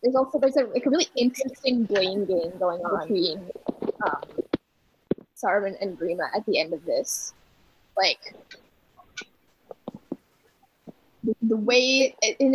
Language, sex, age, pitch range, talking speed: English, female, 10-29, 220-280 Hz, 135 wpm